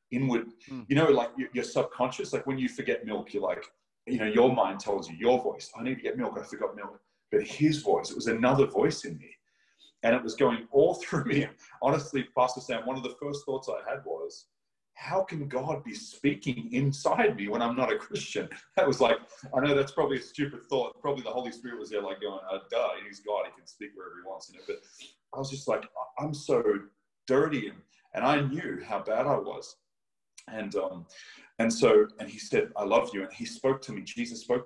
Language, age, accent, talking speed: English, 30-49, Australian, 220 wpm